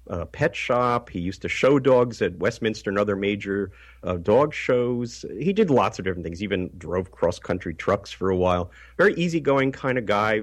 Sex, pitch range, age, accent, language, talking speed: male, 95-125 Hz, 50-69, American, English, 195 wpm